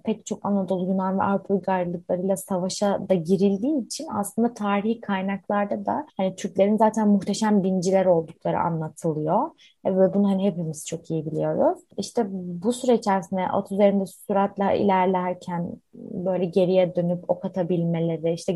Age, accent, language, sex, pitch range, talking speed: 20-39, native, Turkish, female, 180-215 Hz, 135 wpm